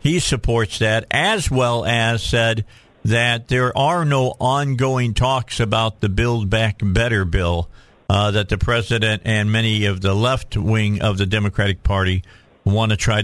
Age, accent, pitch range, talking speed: 50-69, American, 105-130 Hz, 165 wpm